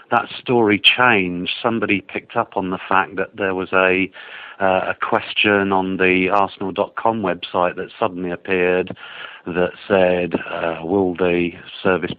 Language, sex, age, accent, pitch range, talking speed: English, male, 50-69, British, 90-110 Hz, 145 wpm